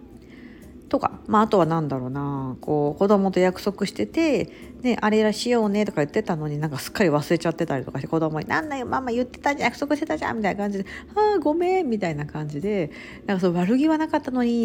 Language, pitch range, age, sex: Japanese, 150-235 Hz, 50-69, female